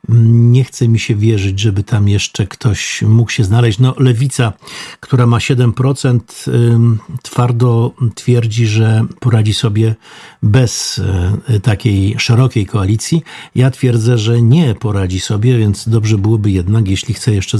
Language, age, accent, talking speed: Polish, 50-69, native, 130 wpm